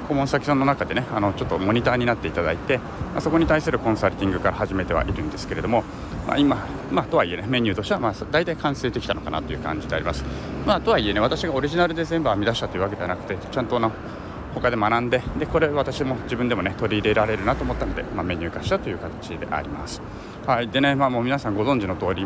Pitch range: 100-130 Hz